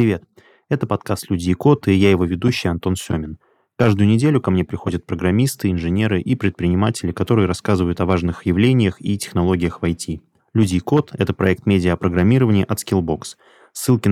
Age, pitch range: 20-39, 90-110 Hz